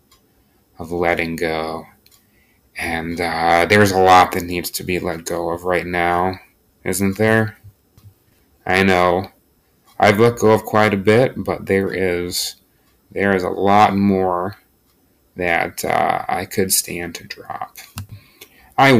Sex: male